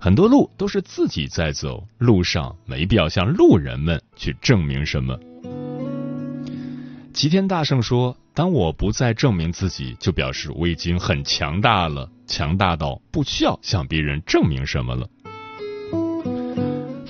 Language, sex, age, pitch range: Chinese, male, 30-49, 75-125 Hz